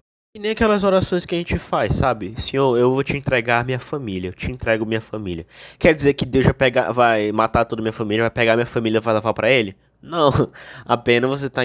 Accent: Brazilian